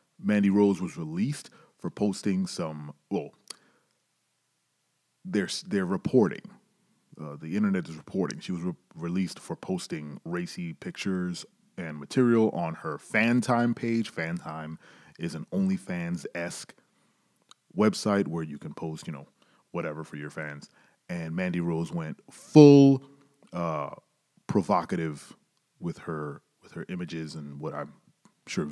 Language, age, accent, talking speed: English, 30-49, American, 125 wpm